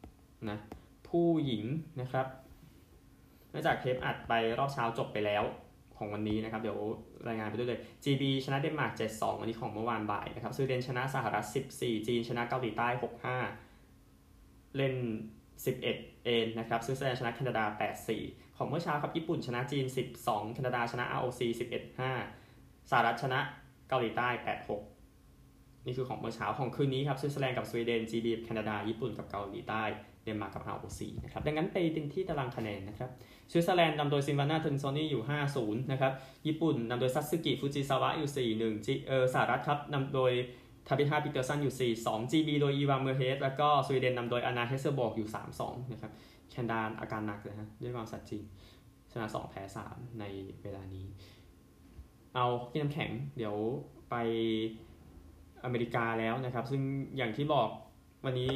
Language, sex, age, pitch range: Thai, male, 20-39, 110-135 Hz